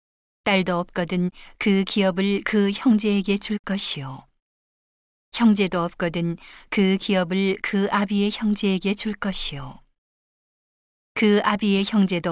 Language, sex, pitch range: Korean, female, 180-205 Hz